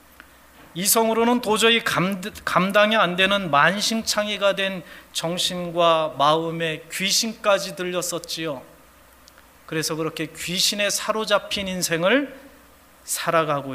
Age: 40-59